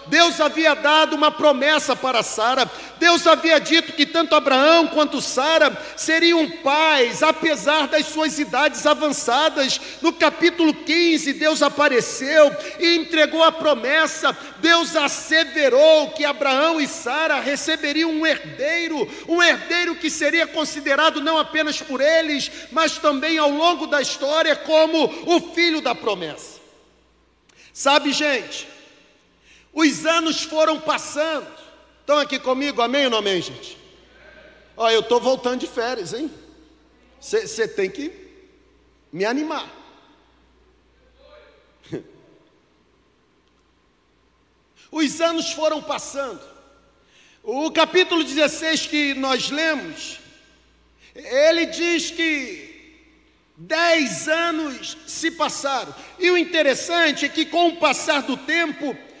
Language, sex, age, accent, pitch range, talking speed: Portuguese, male, 50-69, Brazilian, 290-325 Hz, 115 wpm